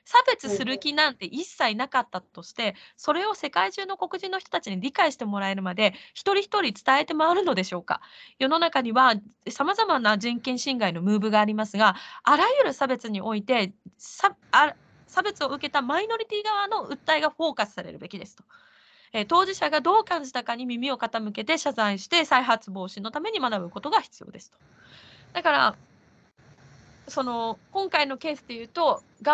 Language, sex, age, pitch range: Japanese, female, 20-39, 220-335 Hz